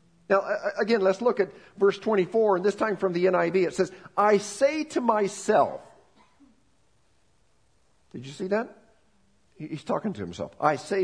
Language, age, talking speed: English, 50-69, 160 wpm